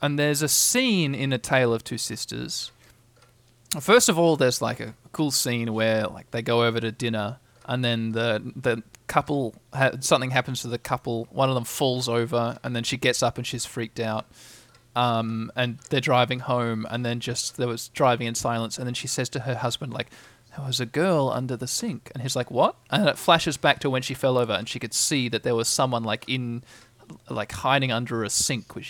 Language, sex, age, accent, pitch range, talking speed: English, male, 20-39, Australian, 115-150 Hz, 220 wpm